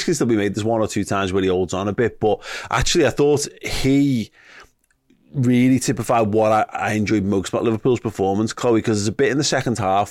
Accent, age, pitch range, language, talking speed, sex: British, 30-49, 100-125 Hz, English, 230 wpm, male